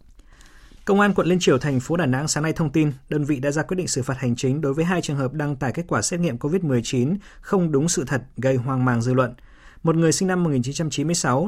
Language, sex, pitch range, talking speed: Vietnamese, male, 125-160 Hz, 255 wpm